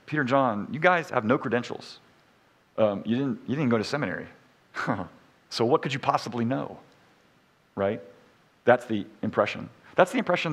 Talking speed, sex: 165 wpm, male